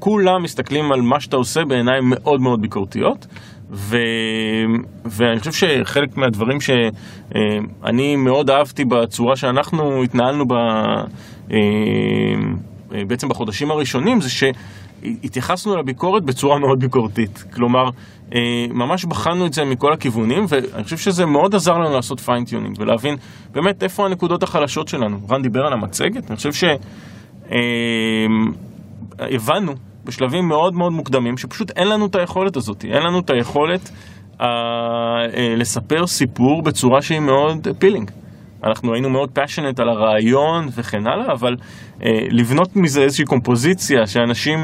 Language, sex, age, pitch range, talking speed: Hebrew, male, 20-39, 115-150 Hz, 130 wpm